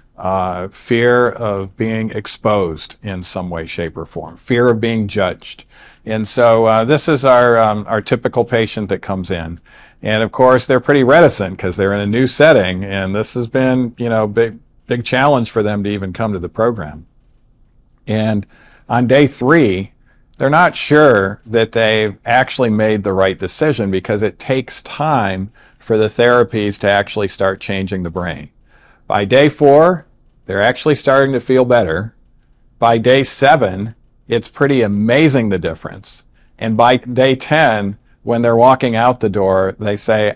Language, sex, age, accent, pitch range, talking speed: English, male, 50-69, American, 100-125 Hz, 170 wpm